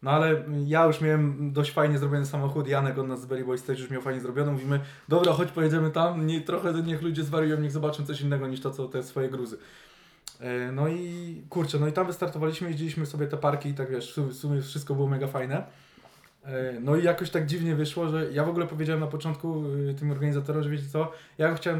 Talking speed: 215 wpm